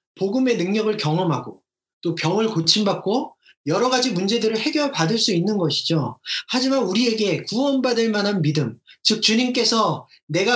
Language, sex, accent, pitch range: Korean, male, native, 160-235 Hz